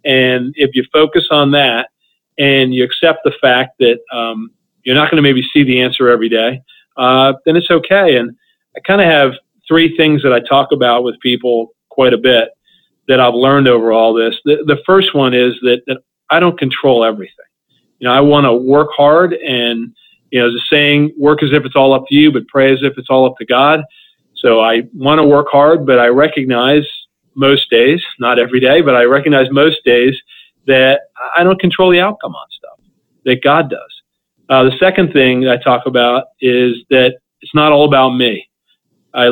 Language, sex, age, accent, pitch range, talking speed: English, male, 40-59, American, 125-150 Hz, 205 wpm